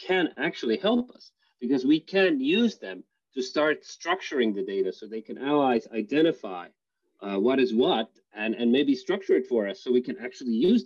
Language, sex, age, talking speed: English, male, 30-49, 195 wpm